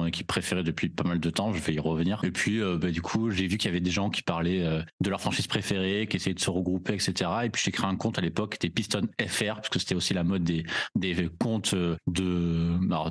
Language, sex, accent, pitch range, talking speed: French, male, French, 90-105 Hz, 275 wpm